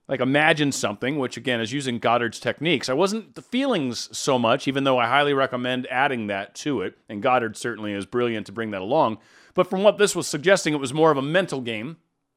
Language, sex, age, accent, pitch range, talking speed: English, male, 30-49, American, 125-185 Hz, 225 wpm